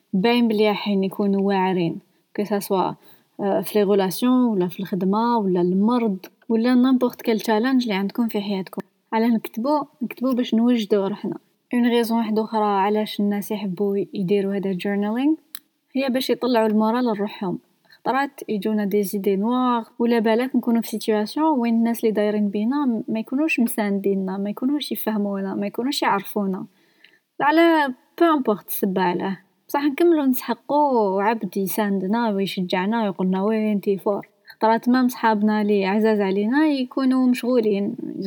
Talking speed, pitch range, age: 135 wpm, 200-250 Hz, 20-39